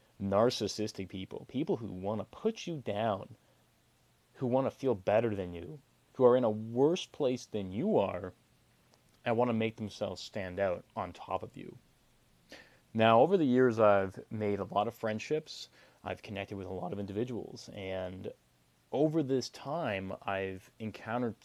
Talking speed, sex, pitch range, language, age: 165 wpm, male, 95-115 Hz, English, 30-49